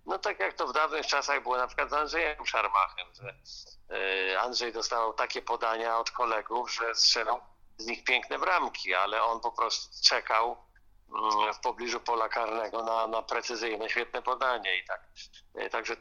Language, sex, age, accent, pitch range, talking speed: Polish, male, 50-69, native, 110-135 Hz, 160 wpm